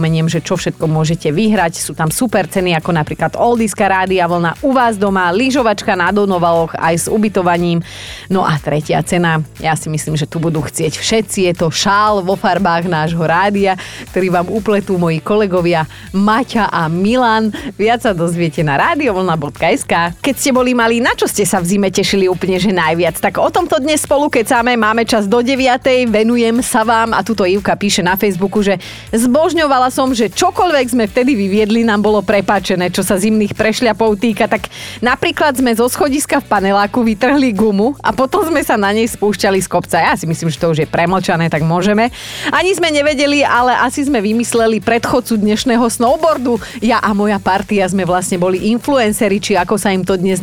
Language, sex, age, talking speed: Slovak, female, 30-49, 185 wpm